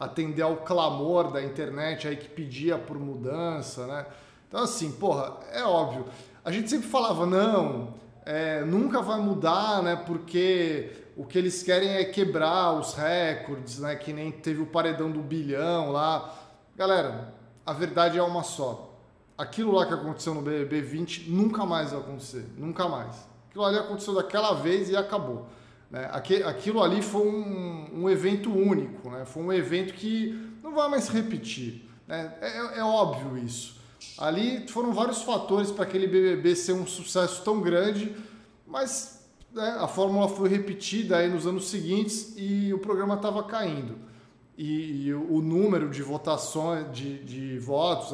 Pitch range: 145-200 Hz